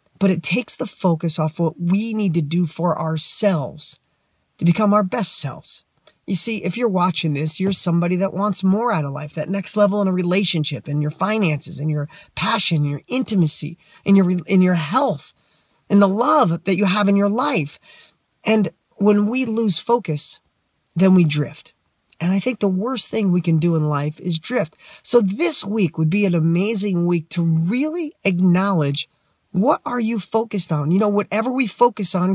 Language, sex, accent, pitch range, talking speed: English, male, American, 160-210 Hz, 195 wpm